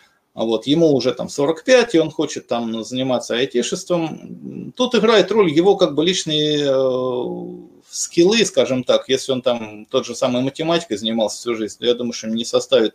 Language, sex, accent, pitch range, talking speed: Russian, male, native, 115-160 Hz, 200 wpm